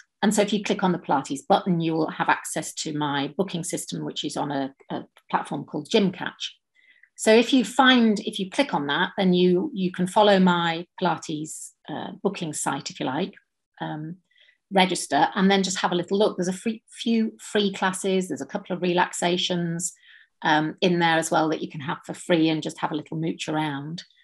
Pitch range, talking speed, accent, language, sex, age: 160-205 Hz, 210 wpm, British, English, female, 40-59